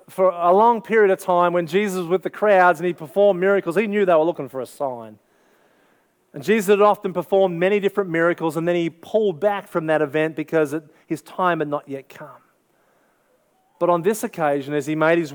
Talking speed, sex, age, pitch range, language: 220 wpm, male, 30-49, 160-200 Hz, English